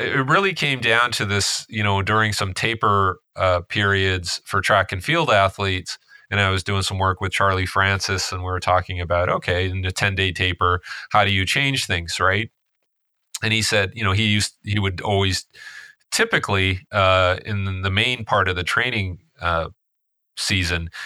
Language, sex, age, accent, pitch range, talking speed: English, male, 30-49, American, 85-105 Hz, 185 wpm